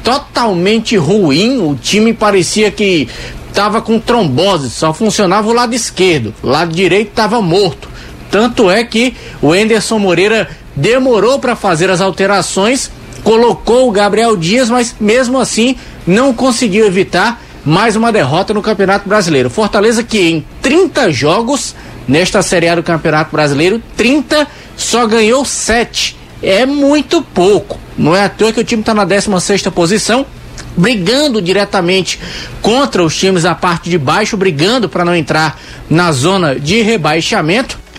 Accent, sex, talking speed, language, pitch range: Brazilian, male, 140 wpm, Portuguese, 175-235 Hz